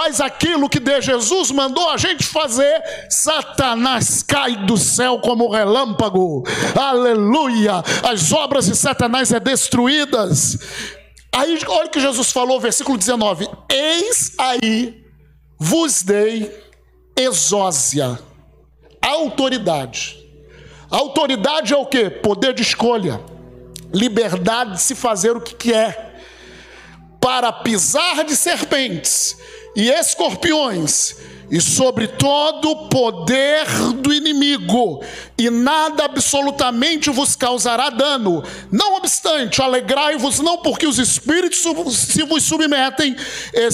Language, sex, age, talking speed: Portuguese, male, 50-69, 110 wpm